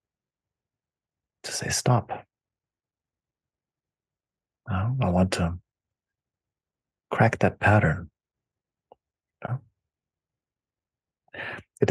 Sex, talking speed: male, 60 wpm